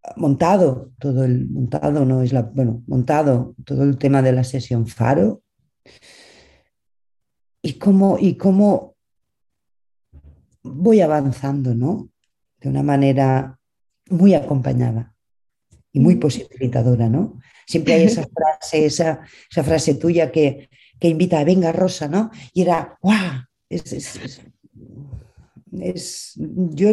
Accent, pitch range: Spanish, 135-180 Hz